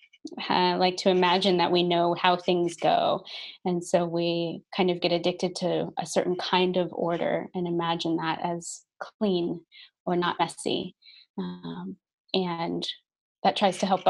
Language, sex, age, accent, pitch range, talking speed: English, female, 20-39, American, 180-200 Hz, 160 wpm